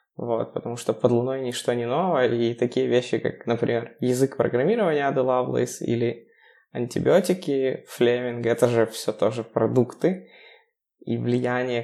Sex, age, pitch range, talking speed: male, 20-39, 115-135 Hz, 130 wpm